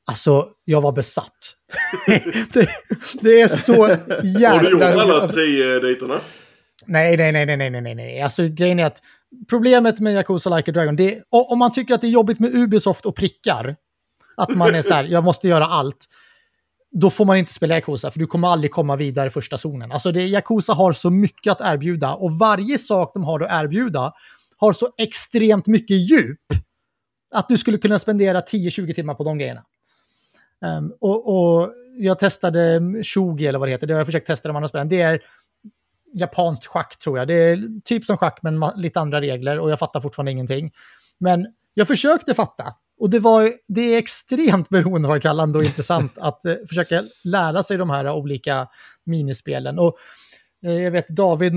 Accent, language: native, Swedish